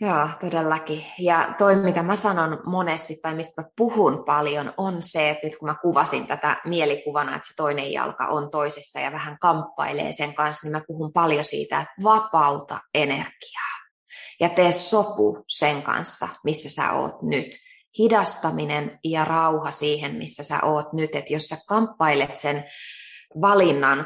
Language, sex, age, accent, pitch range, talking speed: Finnish, female, 20-39, native, 150-190 Hz, 160 wpm